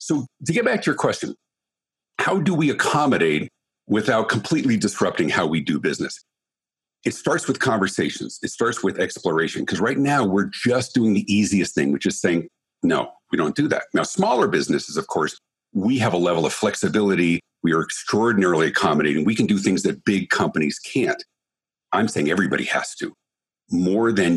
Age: 50-69